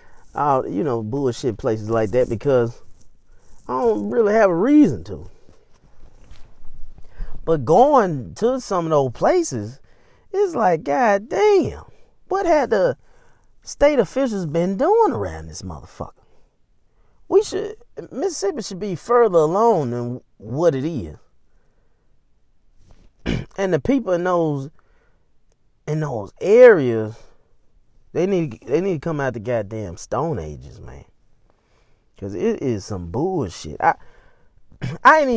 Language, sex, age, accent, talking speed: English, male, 30-49, American, 125 wpm